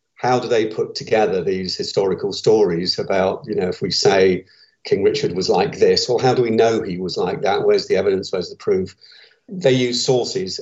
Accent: British